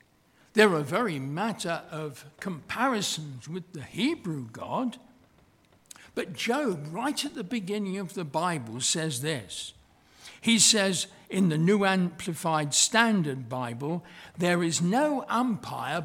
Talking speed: 125 wpm